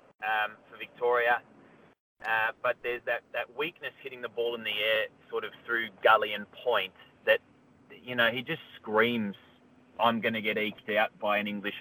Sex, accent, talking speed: male, Australian, 185 wpm